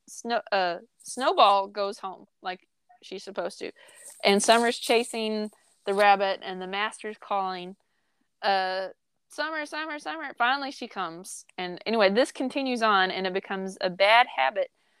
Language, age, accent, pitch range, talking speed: English, 20-39, American, 195-250 Hz, 145 wpm